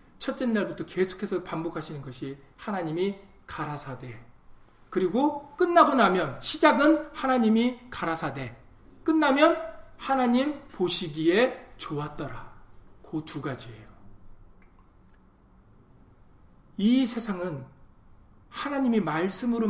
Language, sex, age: Korean, male, 40-59